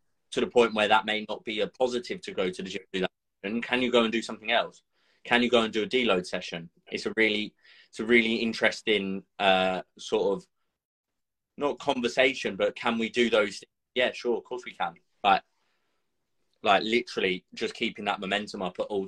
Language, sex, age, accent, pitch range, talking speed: English, male, 20-39, British, 105-130 Hz, 210 wpm